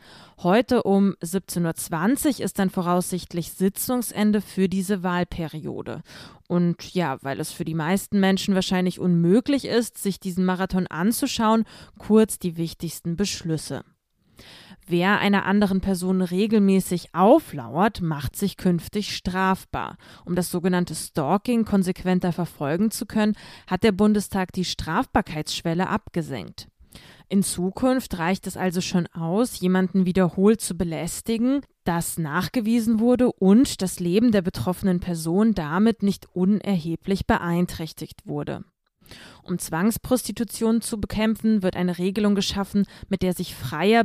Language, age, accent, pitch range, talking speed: German, 20-39, German, 175-210 Hz, 125 wpm